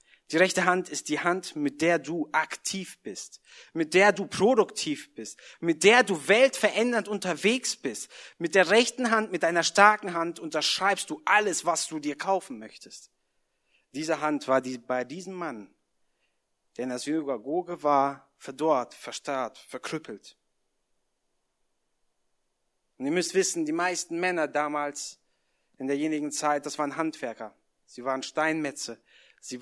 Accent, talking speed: German, 145 wpm